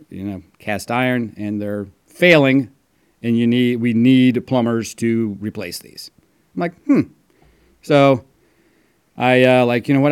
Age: 30-49